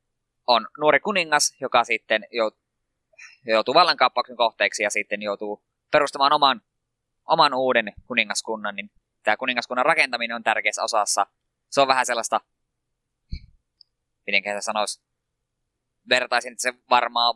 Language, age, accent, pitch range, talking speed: Finnish, 20-39, native, 105-125 Hz, 110 wpm